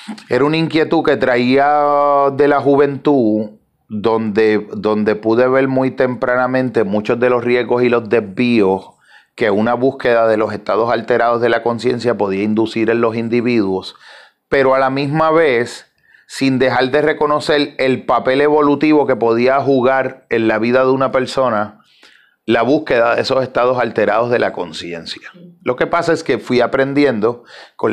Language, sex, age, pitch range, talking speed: Spanish, male, 30-49, 115-140 Hz, 160 wpm